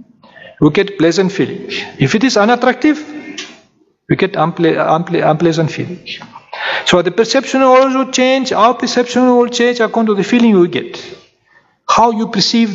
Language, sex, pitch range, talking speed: Indonesian, male, 175-245 Hz, 150 wpm